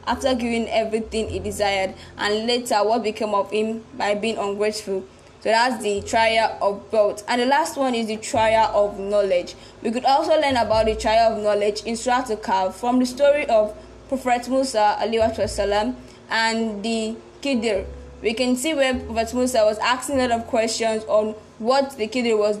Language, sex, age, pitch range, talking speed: English, female, 10-29, 210-260 Hz, 180 wpm